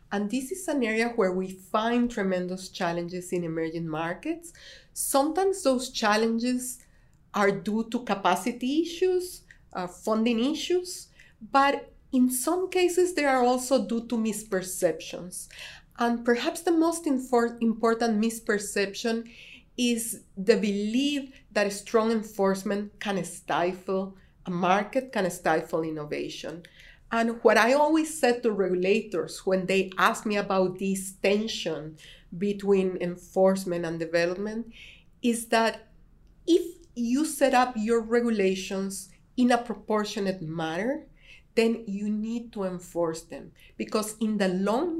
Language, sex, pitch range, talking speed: English, female, 185-240 Hz, 125 wpm